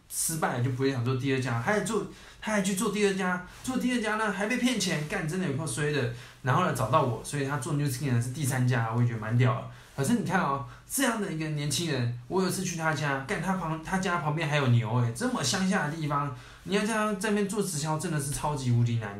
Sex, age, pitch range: male, 20-39, 125-180 Hz